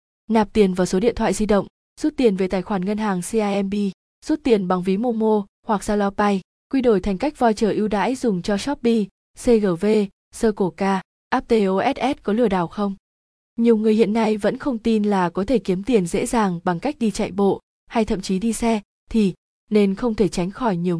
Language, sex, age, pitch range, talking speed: Vietnamese, female, 20-39, 190-230 Hz, 210 wpm